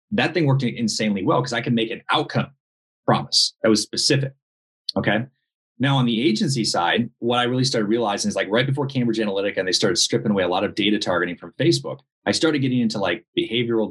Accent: American